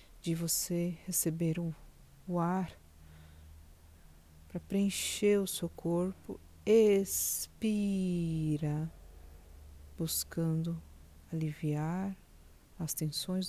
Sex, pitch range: female, 150-180 Hz